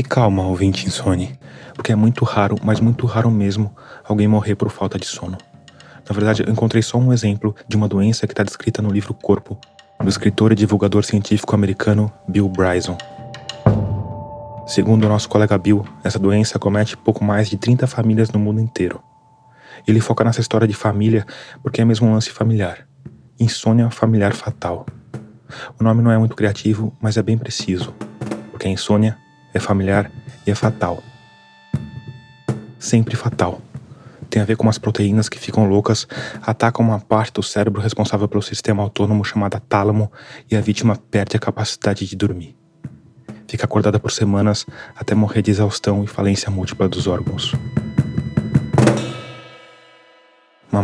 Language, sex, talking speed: Portuguese, male, 160 wpm